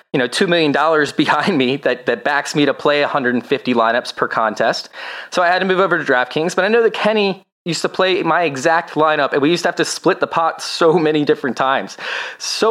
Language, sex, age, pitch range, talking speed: English, male, 20-39, 145-175 Hz, 230 wpm